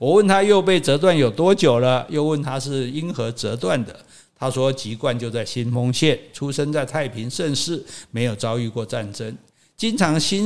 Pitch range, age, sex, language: 115-155 Hz, 60-79, male, Chinese